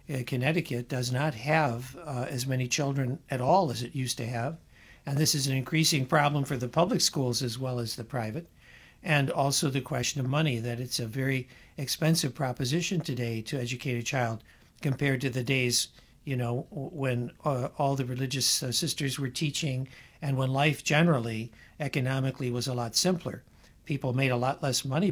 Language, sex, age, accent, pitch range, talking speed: English, male, 60-79, American, 125-150 Hz, 180 wpm